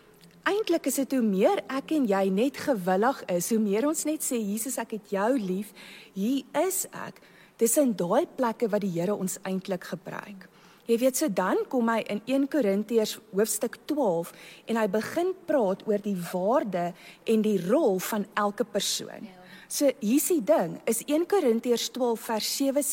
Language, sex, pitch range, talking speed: English, female, 195-275 Hz, 185 wpm